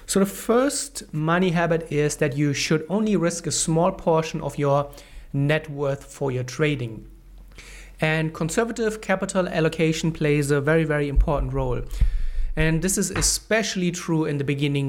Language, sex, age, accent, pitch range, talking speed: English, male, 30-49, German, 140-160 Hz, 155 wpm